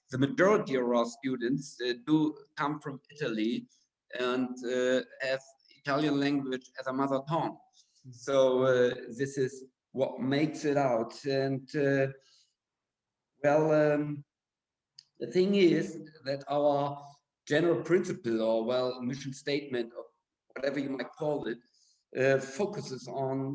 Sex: male